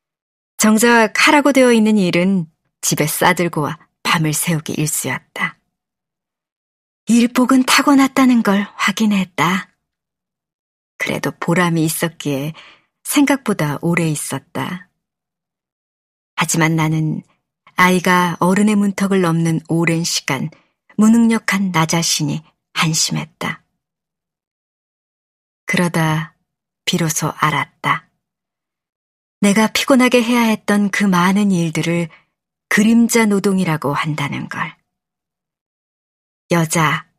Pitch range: 160-205 Hz